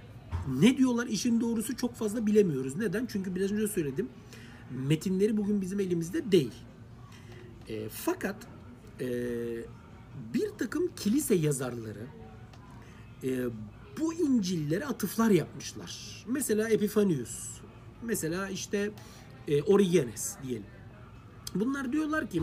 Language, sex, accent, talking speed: Turkish, male, native, 105 wpm